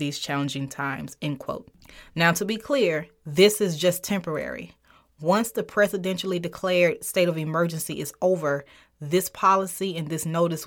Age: 20-39